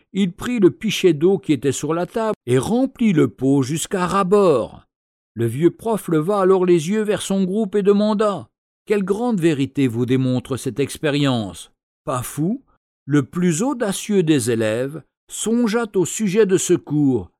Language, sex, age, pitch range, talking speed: French, male, 60-79, 145-200 Hz, 170 wpm